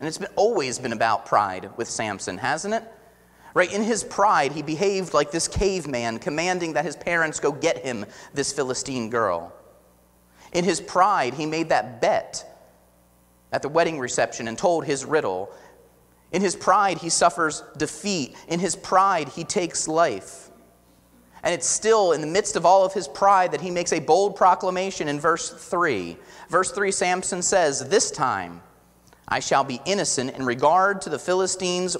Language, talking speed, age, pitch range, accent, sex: English, 170 wpm, 30-49, 135-195 Hz, American, male